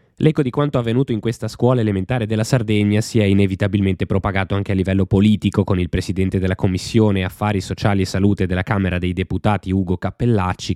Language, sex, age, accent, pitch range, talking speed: Italian, male, 20-39, native, 90-110 Hz, 185 wpm